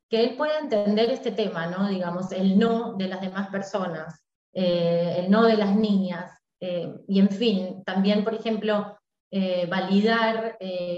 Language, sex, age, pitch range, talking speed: Spanish, female, 20-39, 190-240 Hz, 165 wpm